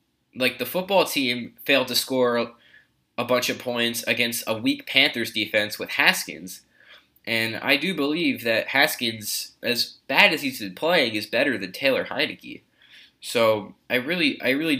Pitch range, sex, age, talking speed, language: 105-130 Hz, male, 10-29, 160 wpm, English